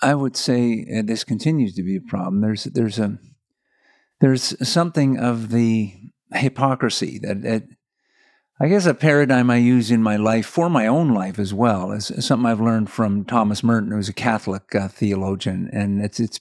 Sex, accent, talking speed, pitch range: male, American, 185 wpm, 105-125 Hz